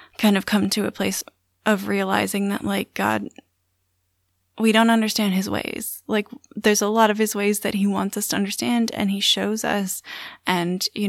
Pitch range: 180-215 Hz